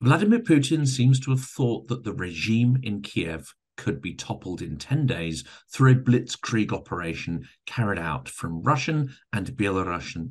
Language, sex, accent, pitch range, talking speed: English, male, British, 105-135 Hz, 155 wpm